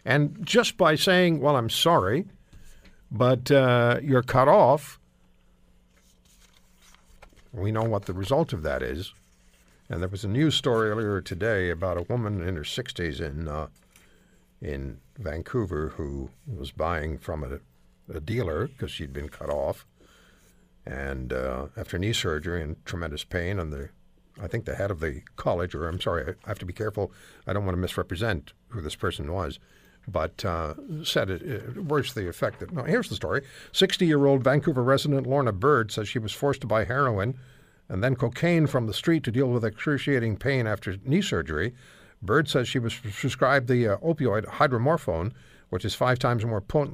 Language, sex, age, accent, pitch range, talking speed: English, male, 60-79, American, 85-135 Hz, 175 wpm